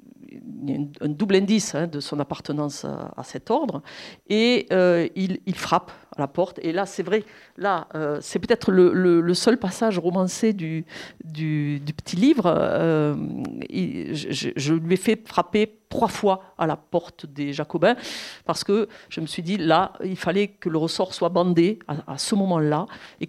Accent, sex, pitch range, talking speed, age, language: French, female, 160-205 Hz, 180 wpm, 50-69, French